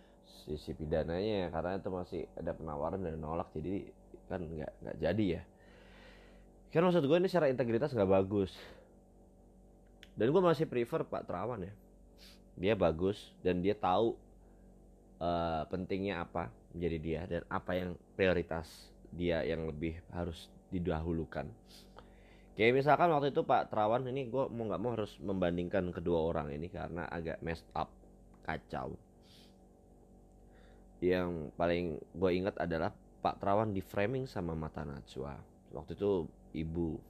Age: 20-39